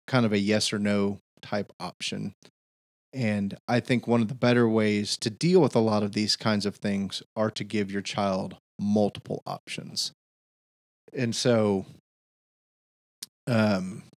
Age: 30-49